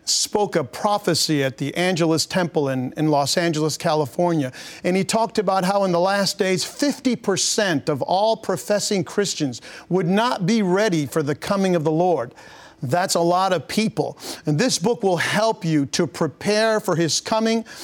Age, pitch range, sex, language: 50-69, 175-225 Hz, male, English